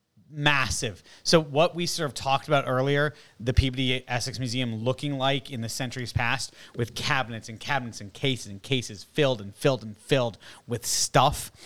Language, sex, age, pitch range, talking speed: English, male, 30-49, 110-135 Hz, 175 wpm